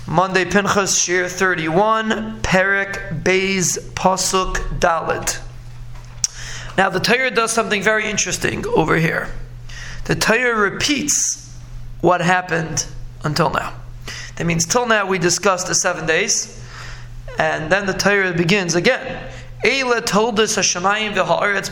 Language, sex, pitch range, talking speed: English, male, 145-195 Hz, 115 wpm